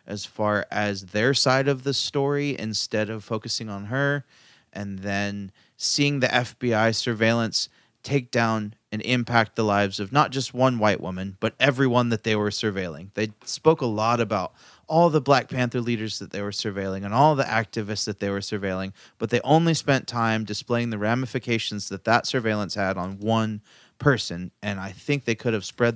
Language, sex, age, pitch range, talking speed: English, male, 30-49, 105-125 Hz, 185 wpm